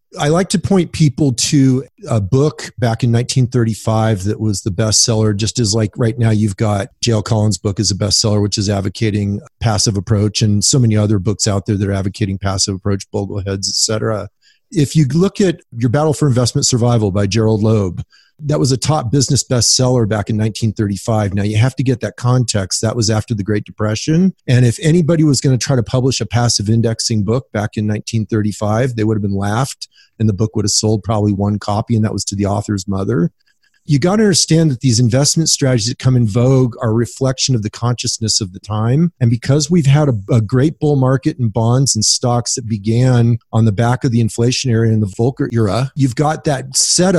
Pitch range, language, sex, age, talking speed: 110-135 Hz, English, male, 40-59, 215 wpm